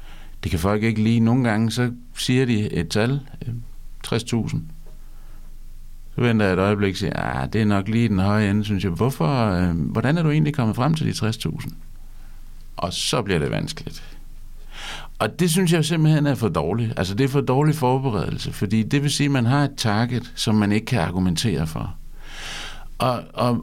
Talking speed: 190 wpm